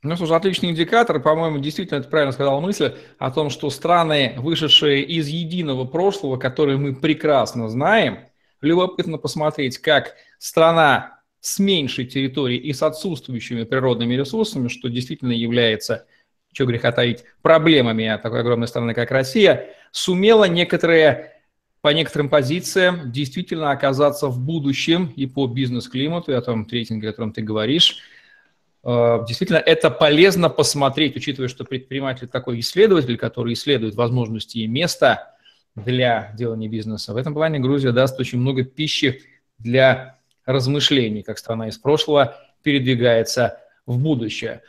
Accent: native